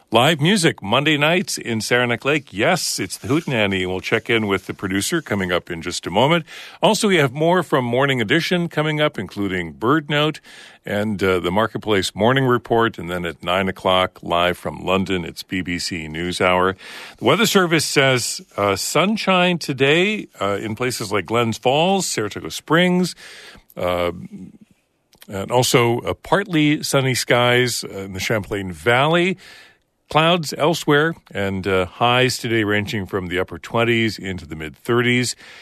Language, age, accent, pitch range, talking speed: English, 50-69, American, 95-135 Hz, 155 wpm